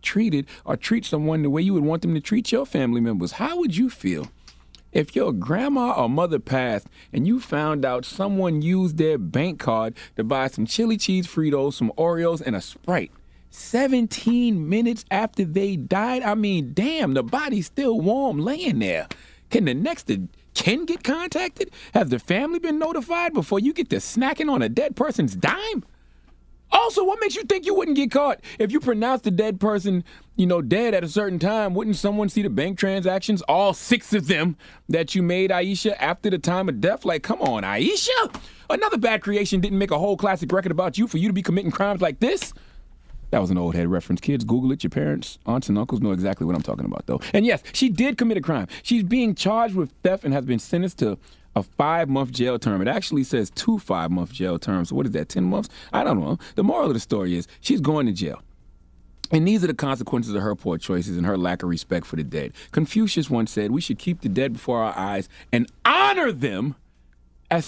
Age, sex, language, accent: 30-49, male, English, American